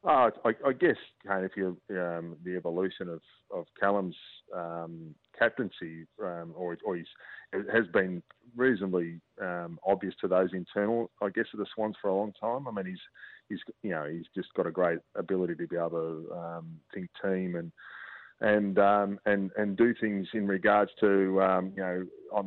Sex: male